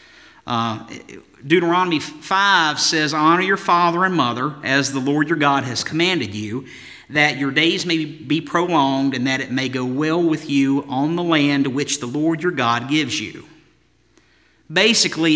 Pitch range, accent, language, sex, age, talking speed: 135-180 Hz, American, English, male, 50-69, 165 wpm